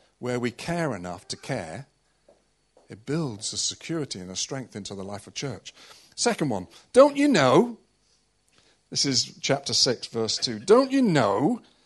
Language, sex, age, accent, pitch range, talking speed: English, male, 50-69, British, 150-230 Hz, 160 wpm